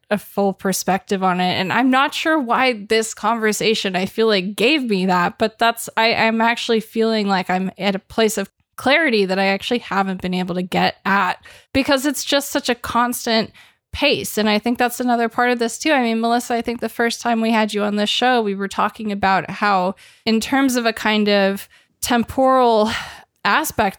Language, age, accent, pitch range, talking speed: English, 20-39, American, 195-230 Hz, 205 wpm